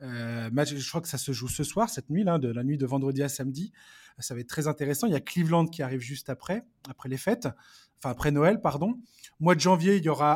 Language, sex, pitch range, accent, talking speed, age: French, male, 140-185 Hz, French, 265 wpm, 20-39